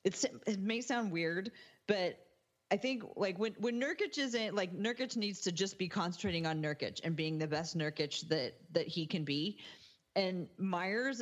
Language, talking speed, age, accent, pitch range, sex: English, 180 wpm, 30-49, American, 160-200 Hz, female